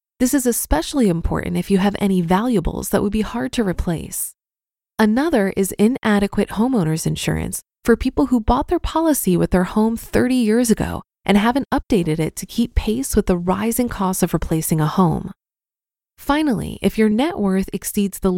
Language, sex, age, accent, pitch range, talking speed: English, female, 20-39, American, 185-245 Hz, 175 wpm